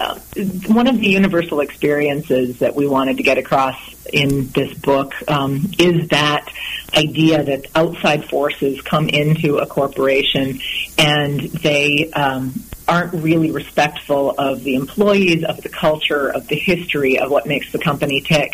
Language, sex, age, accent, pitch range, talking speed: English, female, 40-59, American, 135-155 Hz, 150 wpm